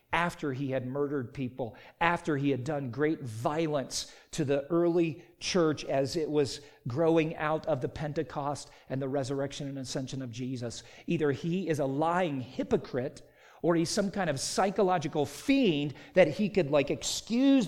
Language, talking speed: English, 165 wpm